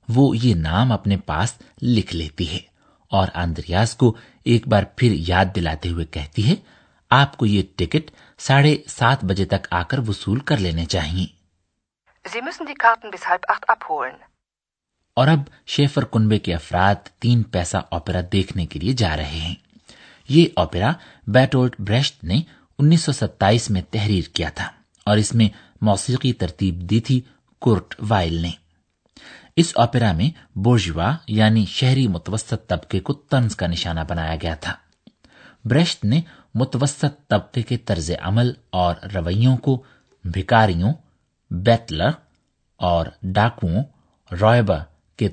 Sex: male